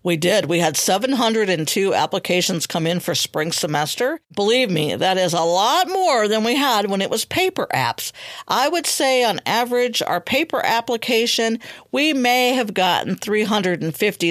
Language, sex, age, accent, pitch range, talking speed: English, female, 50-69, American, 180-235 Hz, 165 wpm